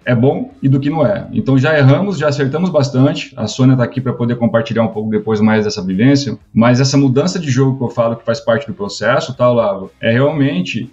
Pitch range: 115-135 Hz